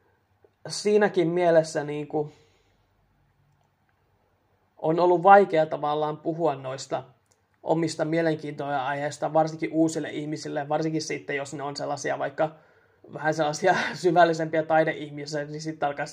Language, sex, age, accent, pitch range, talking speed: Finnish, male, 20-39, native, 150-170 Hz, 110 wpm